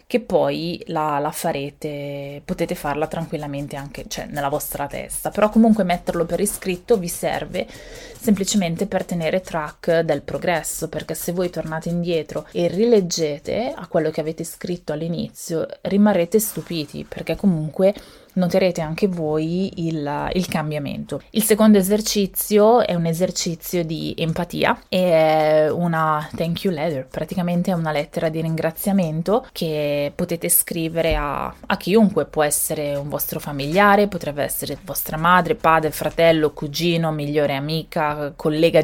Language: Italian